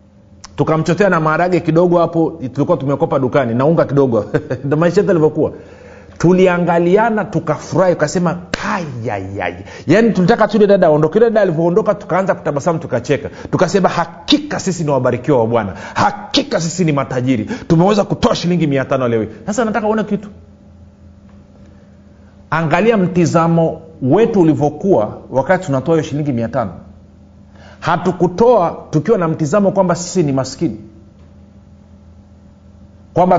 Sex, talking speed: male, 120 wpm